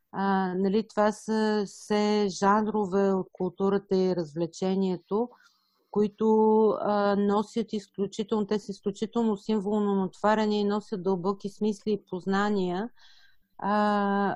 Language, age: Bulgarian, 50-69